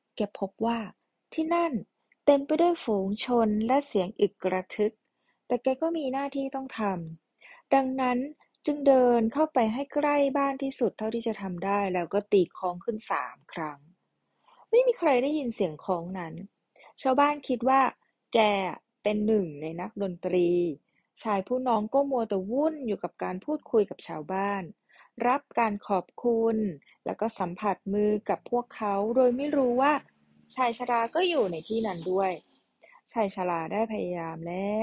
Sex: female